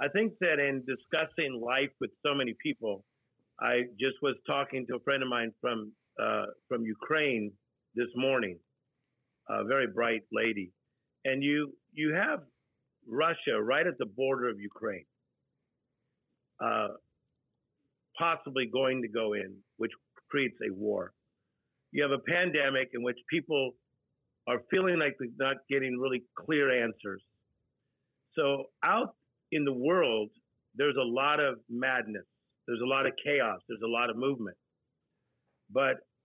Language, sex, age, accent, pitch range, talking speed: English, male, 50-69, American, 120-140 Hz, 145 wpm